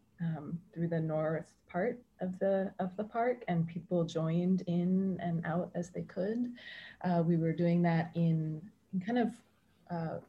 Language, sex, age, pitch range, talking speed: English, female, 20-39, 155-185 Hz, 170 wpm